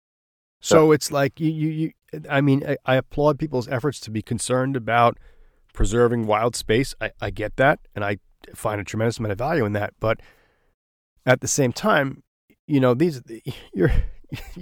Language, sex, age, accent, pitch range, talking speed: English, male, 30-49, American, 110-140 Hz, 175 wpm